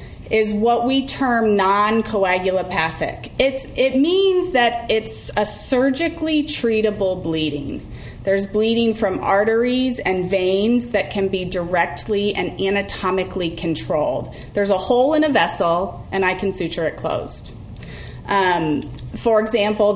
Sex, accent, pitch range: female, American, 185-245 Hz